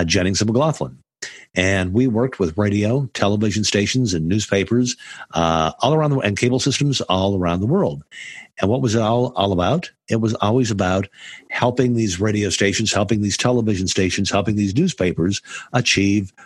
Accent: American